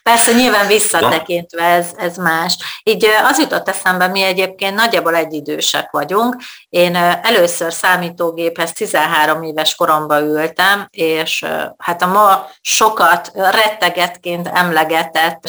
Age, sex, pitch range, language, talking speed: 30-49, female, 155-190 Hz, Hungarian, 110 wpm